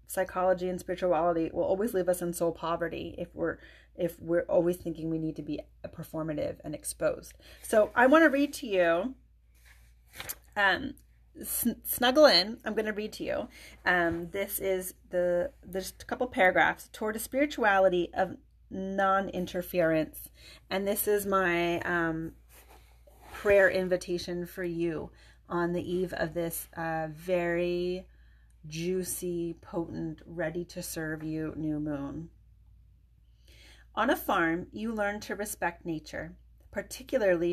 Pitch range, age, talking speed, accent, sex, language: 160-205 Hz, 30-49, 130 wpm, American, female, English